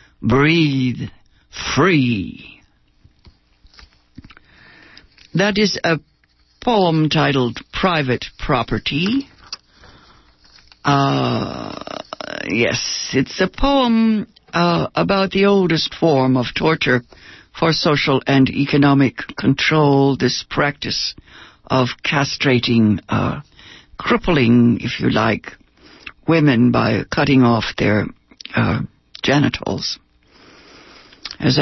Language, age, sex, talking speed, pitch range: English, 60-79, female, 80 wpm, 130-170 Hz